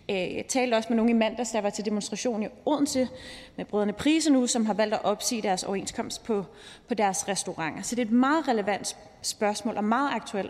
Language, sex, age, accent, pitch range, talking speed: Danish, female, 30-49, native, 215-255 Hz, 210 wpm